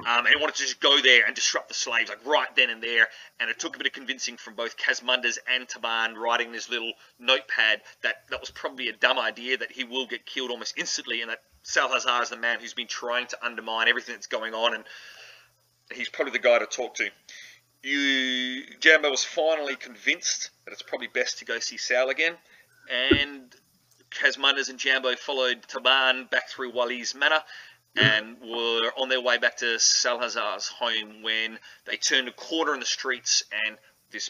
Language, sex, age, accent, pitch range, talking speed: English, male, 30-49, Australian, 115-130 Hz, 200 wpm